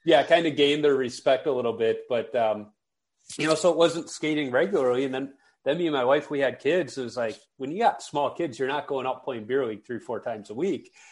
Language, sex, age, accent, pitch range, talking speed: English, male, 30-49, American, 120-170 Hz, 260 wpm